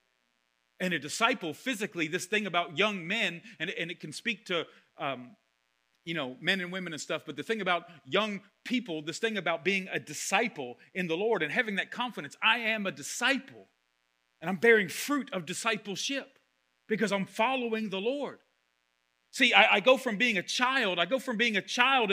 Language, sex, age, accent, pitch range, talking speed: English, male, 40-59, American, 170-235 Hz, 195 wpm